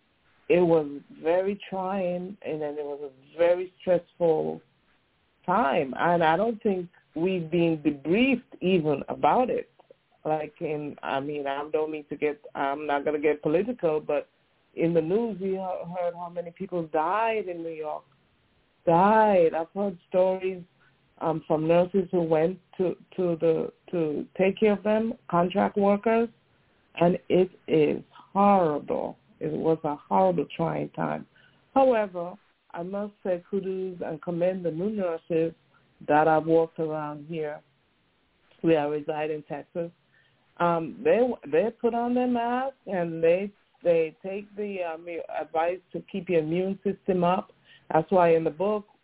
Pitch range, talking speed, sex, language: 160-190 Hz, 150 wpm, female, English